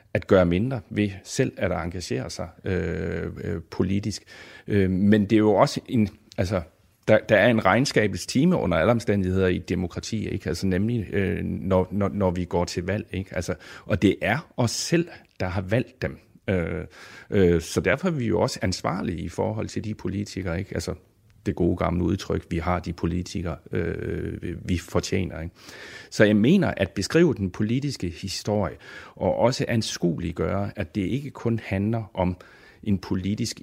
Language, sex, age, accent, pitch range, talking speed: Danish, male, 40-59, native, 90-105 Hz, 175 wpm